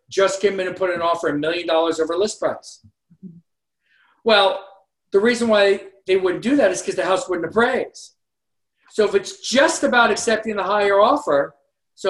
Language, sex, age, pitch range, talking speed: English, male, 50-69, 165-215 Hz, 185 wpm